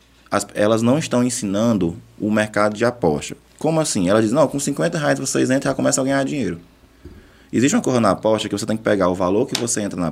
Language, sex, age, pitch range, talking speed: Portuguese, male, 20-39, 90-110 Hz, 245 wpm